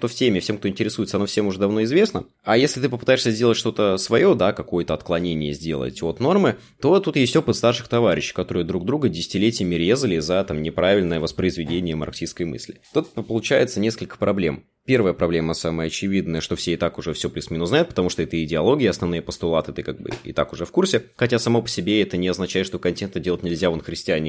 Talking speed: 205 wpm